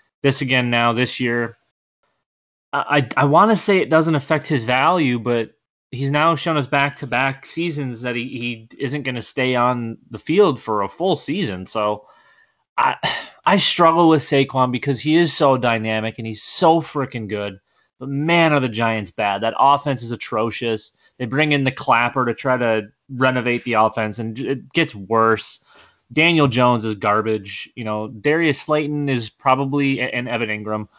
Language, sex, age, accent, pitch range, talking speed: English, male, 20-39, American, 110-140 Hz, 175 wpm